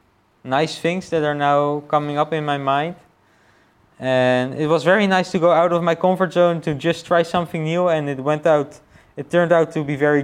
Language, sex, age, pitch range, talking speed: English, male, 20-39, 120-150 Hz, 215 wpm